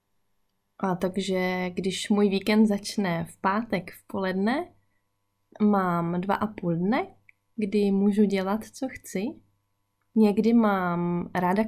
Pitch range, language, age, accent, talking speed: 175-210 Hz, Czech, 20-39, native, 120 wpm